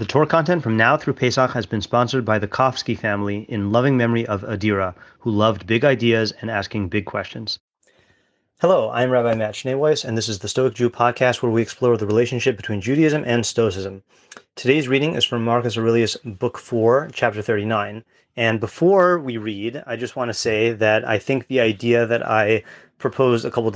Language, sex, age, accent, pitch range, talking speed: English, male, 30-49, American, 110-125 Hz, 195 wpm